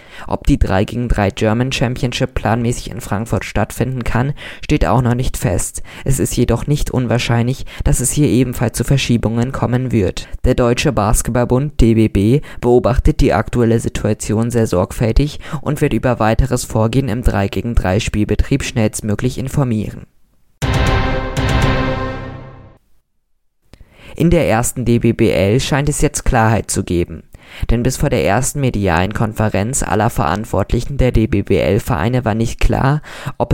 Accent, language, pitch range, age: German, German, 110-130 Hz, 20-39